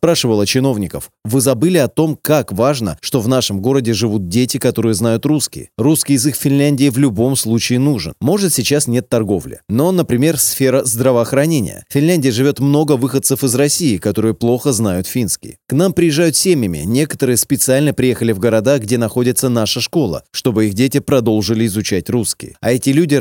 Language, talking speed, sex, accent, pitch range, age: Russian, 170 wpm, male, native, 115-145 Hz, 20-39